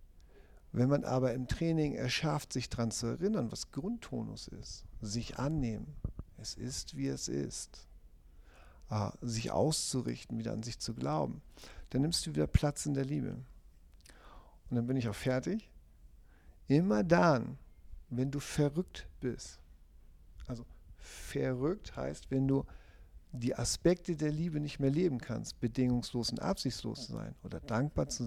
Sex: male